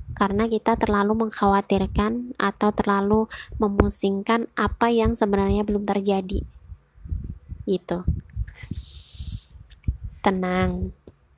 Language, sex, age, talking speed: Indonesian, female, 20-39, 75 wpm